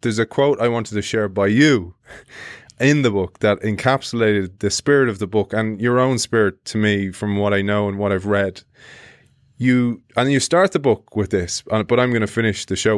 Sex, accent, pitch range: male, Irish, 100-125 Hz